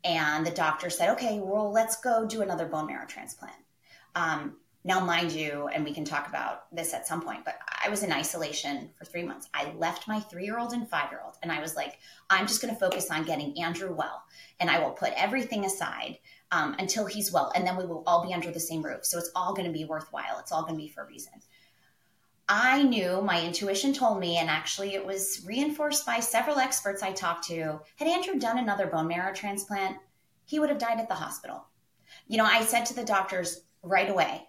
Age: 20-39